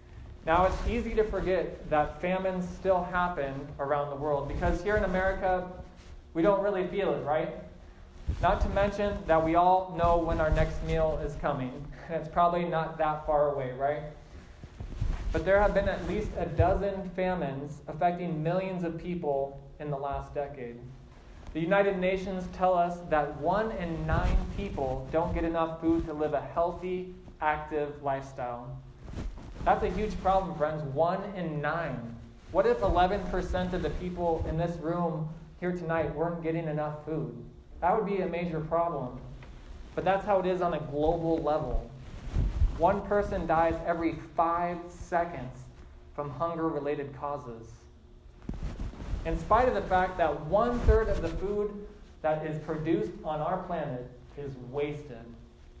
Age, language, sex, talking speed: 20-39, English, male, 160 wpm